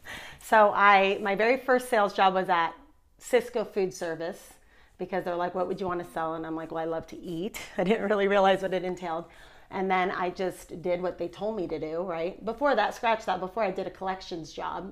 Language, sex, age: English, female, 30-49